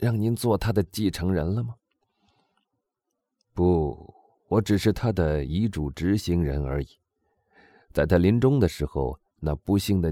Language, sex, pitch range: Chinese, male, 75-110 Hz